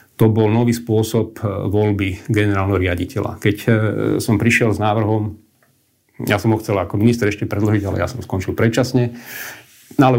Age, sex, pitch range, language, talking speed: 40-59, male, 100-115 Hz, Slovak, 155 wpm